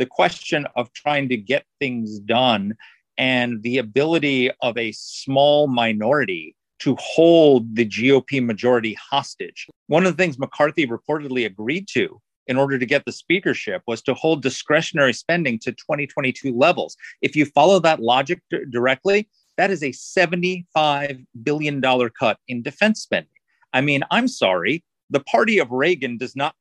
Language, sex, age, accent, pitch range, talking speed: English, male, 40-59, American, 130-180 Hz, 155 wpm